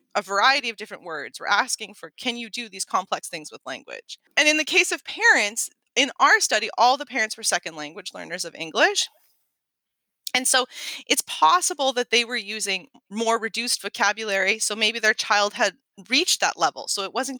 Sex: female